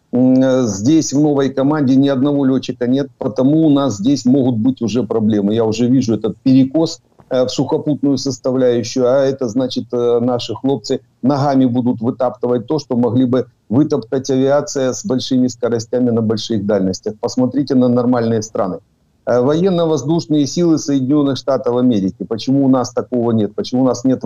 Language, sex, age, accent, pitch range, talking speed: Ukrainian, male, 50-69, native, 120-140 Hz, 155 wpm